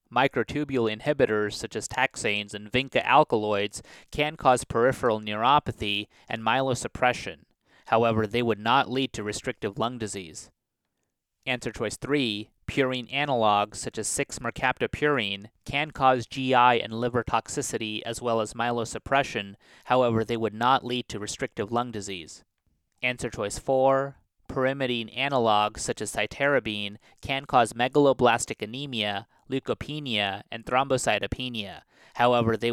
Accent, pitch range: American, 105-130 Hz